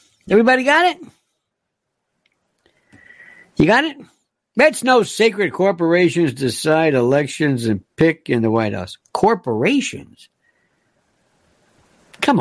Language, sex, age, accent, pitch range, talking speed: English, male, 60-79, American, 160-255 Hz, 95 wpm